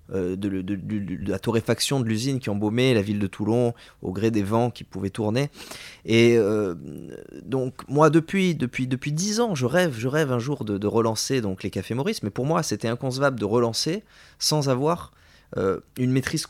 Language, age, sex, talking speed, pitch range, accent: French, 20-39, male, 200 wpm, 100-130 Hz, French